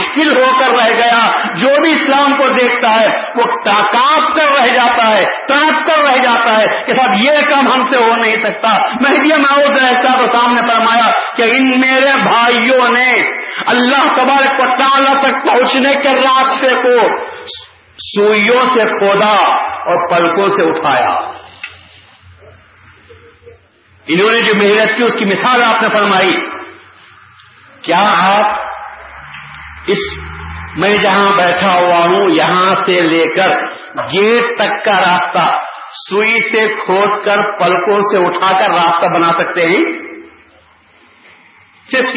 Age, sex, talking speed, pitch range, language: 50-69, male, 135 wpm, 200-270 Hz, Urdu